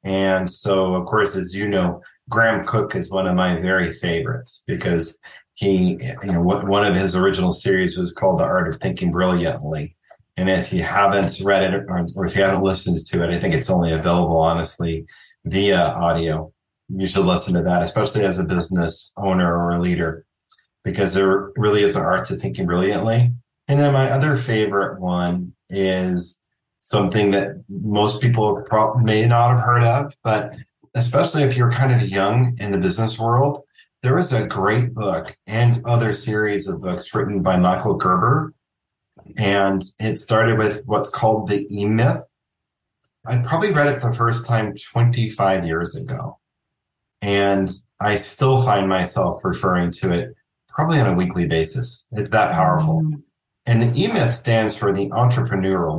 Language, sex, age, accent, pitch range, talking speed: English, male, 30-49, American, 95-120 Hz, 165 wpm